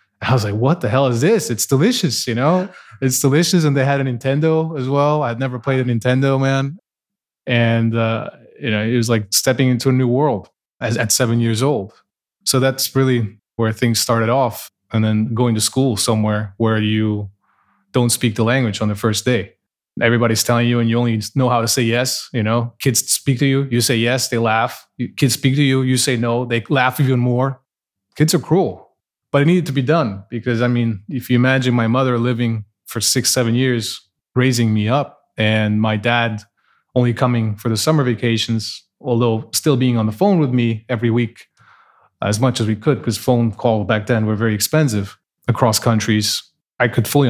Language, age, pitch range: English, 20-39, 110-130 Hz